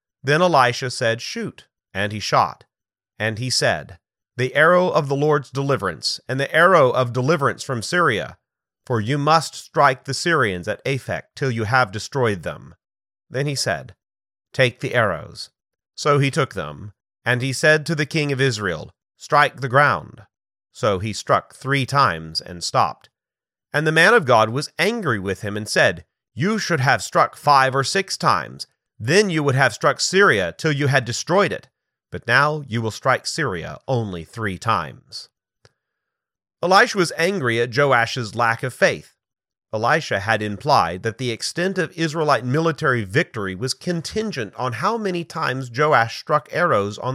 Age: 30-49